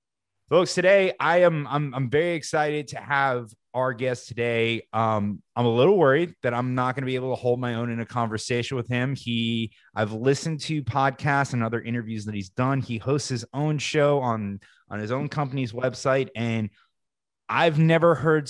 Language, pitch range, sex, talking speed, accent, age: English, 110-135 Hz, male, 195 wpm, American, 20-39